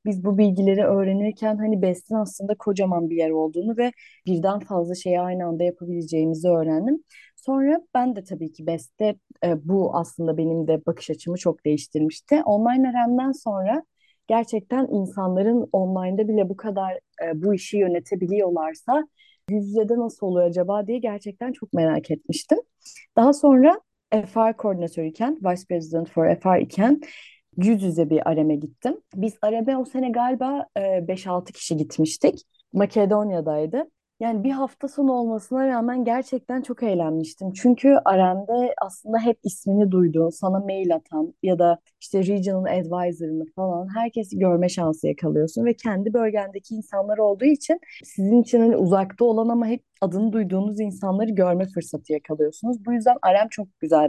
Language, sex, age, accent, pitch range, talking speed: Turkish, female, 30-49, native, 170-235 Hz, 145 wpm